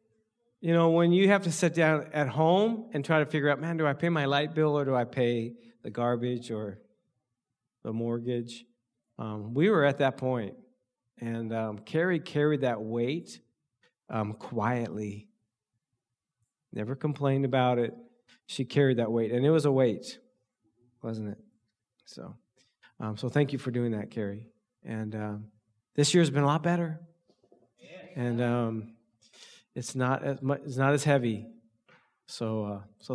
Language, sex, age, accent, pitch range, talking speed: English, male, 50-69, American, 120-160 Hz, 165 wpm